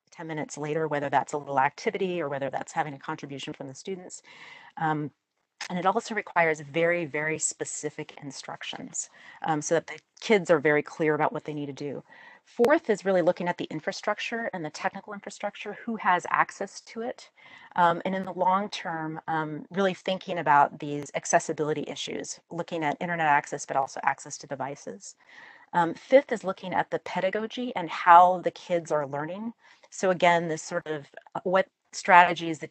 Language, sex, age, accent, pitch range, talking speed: English, female, 40-59, American, 145-180 Hz, 180 wpm